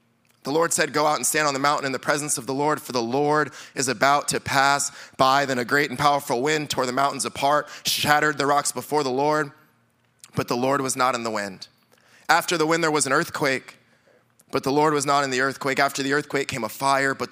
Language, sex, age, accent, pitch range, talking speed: English, male, 20-39, American, 120-150 Hz, 245 wpm